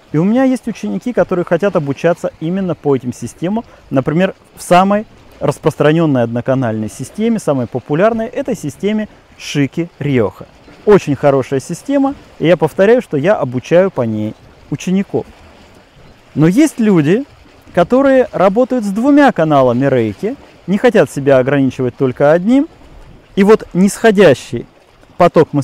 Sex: male